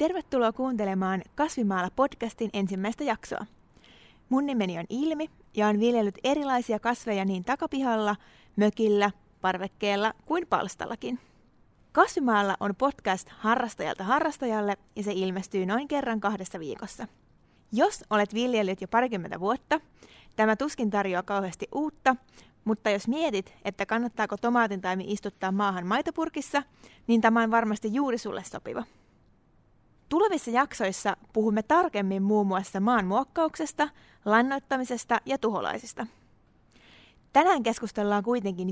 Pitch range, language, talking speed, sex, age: 200-265 Hz, Finnish, 115 wpm, female, 20-39